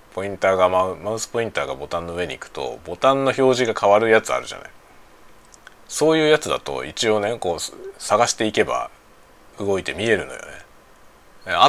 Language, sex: Japanese, male